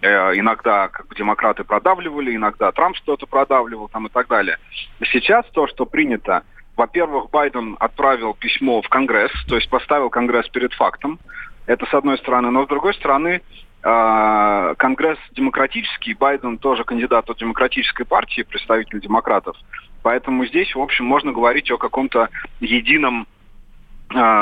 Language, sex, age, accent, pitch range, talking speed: Russian, male, 30-49, native, 110-175 Hz, 140 wpm